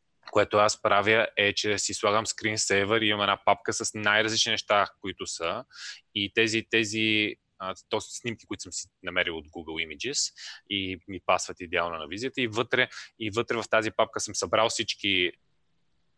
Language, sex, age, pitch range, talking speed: Bulgarian, male, 20-39, 100-115 Hz, 170 wpm